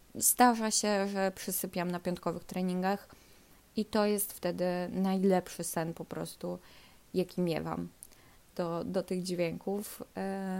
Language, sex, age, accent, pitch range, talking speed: Polish, female, 20-39, native, 180-210 Hz, 125 wpm